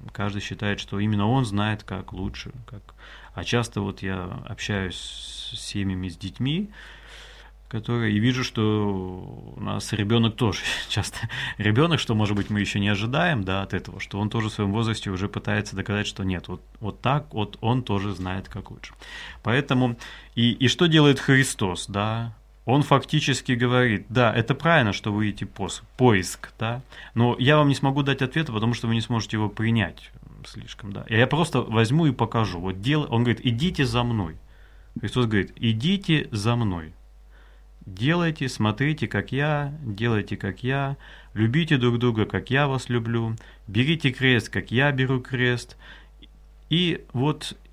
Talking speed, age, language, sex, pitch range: 165 wpm, 20-39, Russian, male, 100-135 Hz